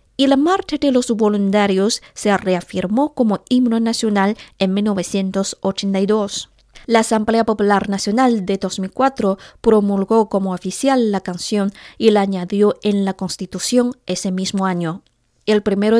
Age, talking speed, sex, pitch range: 20-39, 130 wpm, female, 195-245 Hz